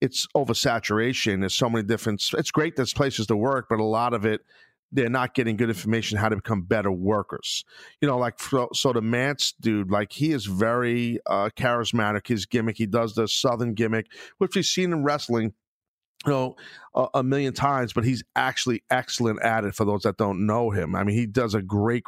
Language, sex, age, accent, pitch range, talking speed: English, male, 40-59, American, 110-135 Hz, 210 wpm